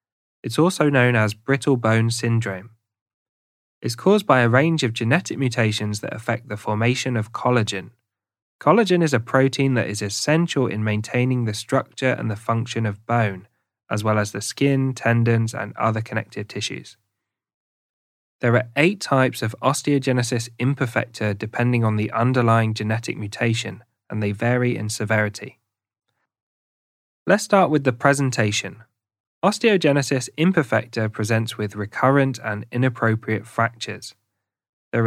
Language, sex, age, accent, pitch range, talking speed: English, male, 20-39, British, 110-130 Hz, 135 wpm